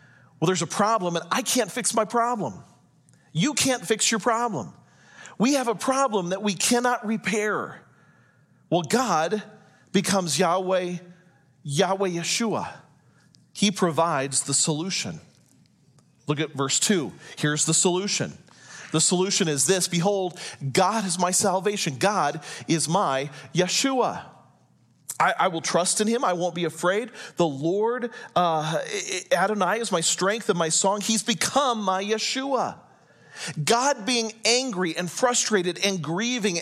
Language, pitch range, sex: English, 170-225 Hz, male